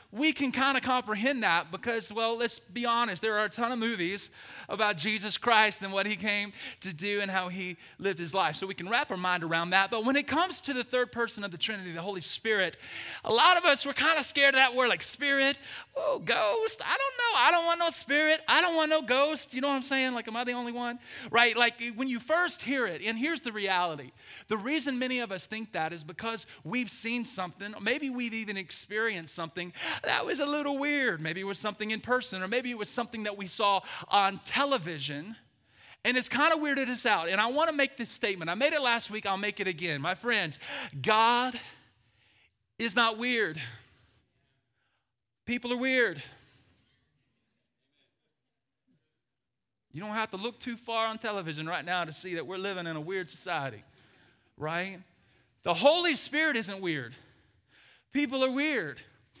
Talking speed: 205 wpm